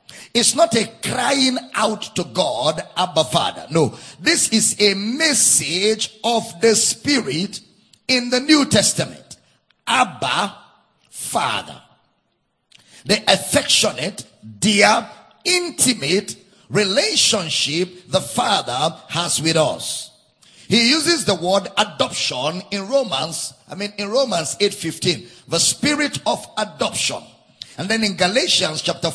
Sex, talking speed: male, 110 wpm